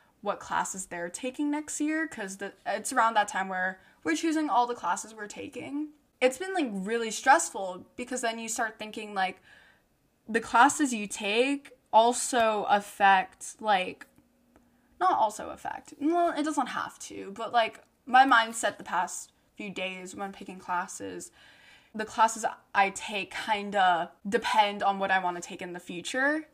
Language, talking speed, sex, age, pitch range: English, 165 wpm, female, 10-29, 195-255 Hz